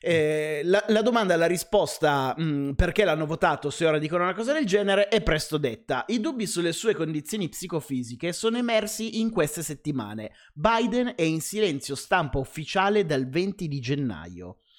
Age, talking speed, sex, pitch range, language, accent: 30-49, 160 wpm, male, 140-195 Hz, Italian, native